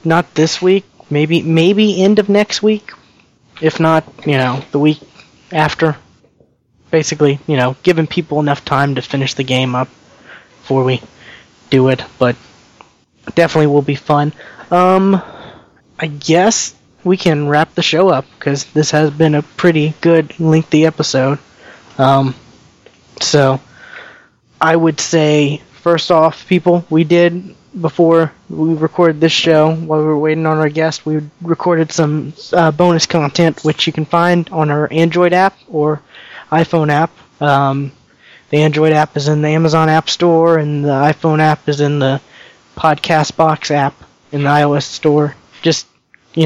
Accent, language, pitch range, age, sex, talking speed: American, English, 145-165 Hz, 20-39, male, 155 wpm